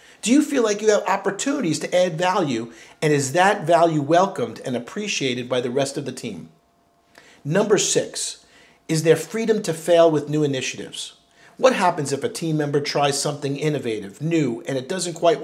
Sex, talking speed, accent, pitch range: male, 185 wpm, American, 140-185 Hz